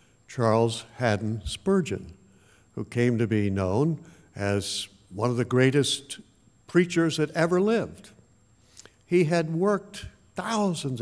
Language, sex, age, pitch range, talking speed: English, male, 60-79, 115-165 Hz, 115 wpm